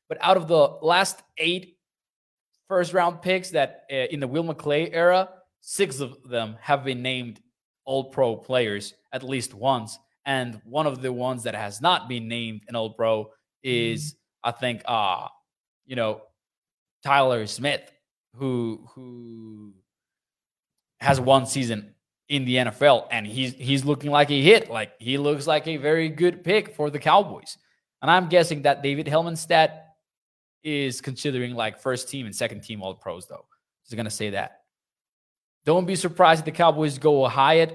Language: English